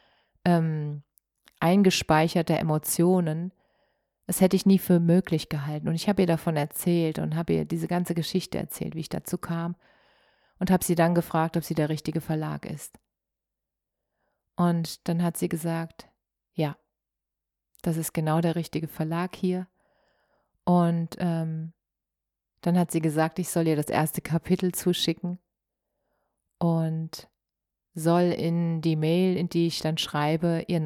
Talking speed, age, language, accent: 145 wpm, 30-49, German, German